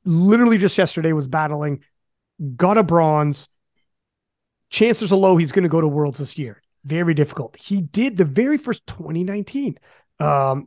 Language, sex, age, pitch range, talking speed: English, male, 30-49, 150-210 Hz, 155 wpm